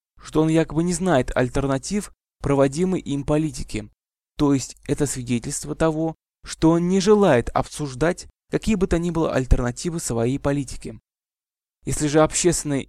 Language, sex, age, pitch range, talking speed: Russian, male, 20-39, 125-160 Hz, 140 wpm